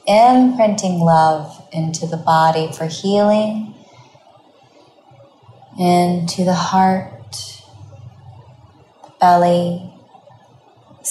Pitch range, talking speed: 160-185 Hz, 70 wpm